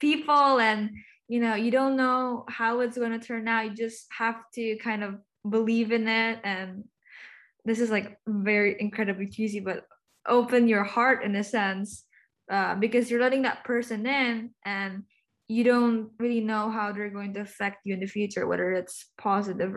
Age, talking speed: 10-29, 180 wpm